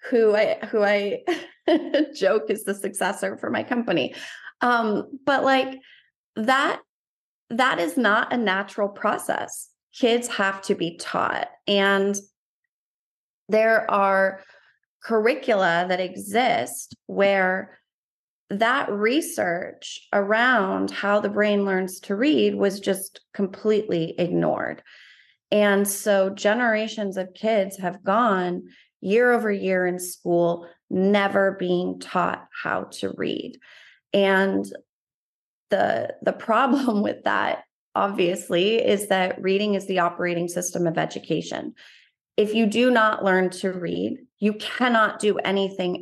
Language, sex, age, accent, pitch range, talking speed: English, female, 30-49, American, 185-225 Hz, 120 wpm